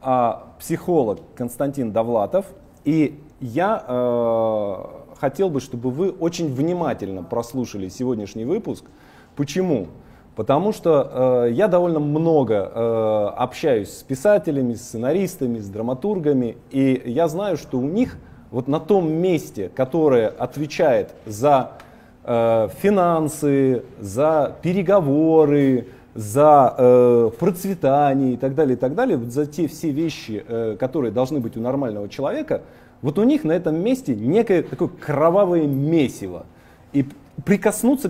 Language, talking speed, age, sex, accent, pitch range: Russian, 125 wpm, 20-39, male, native, 125-170 Hz